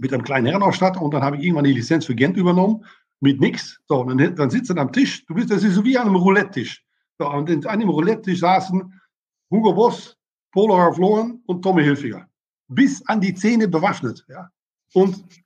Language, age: German, 60-79